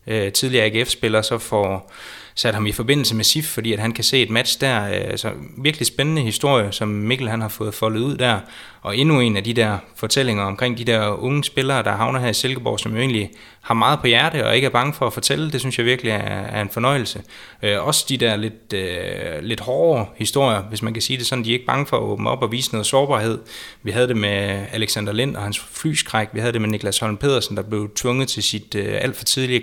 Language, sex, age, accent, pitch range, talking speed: Danish, male, 20-39, native, 105-130 Hz, 240 wpm